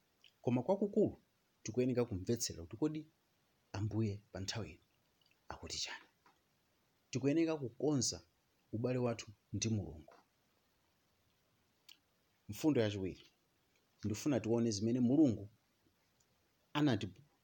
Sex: male